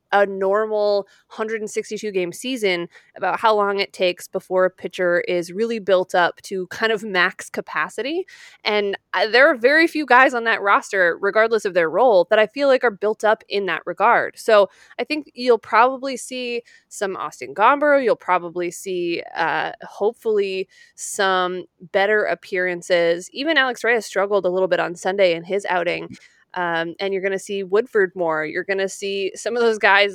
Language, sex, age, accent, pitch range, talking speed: English, female, 20-39, American, 190-245 Hz, 175 wpm